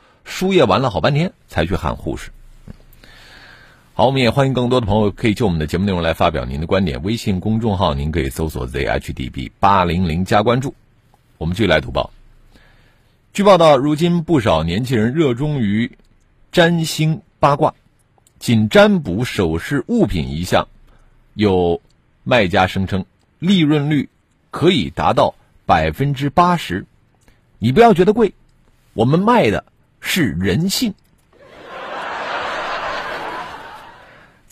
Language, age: Chinese, 50-69